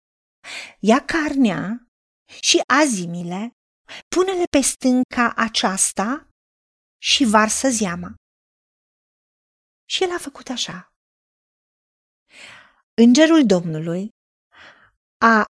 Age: 30-49